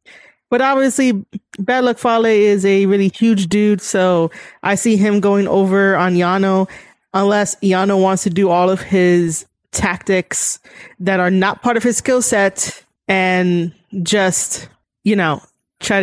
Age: 20-39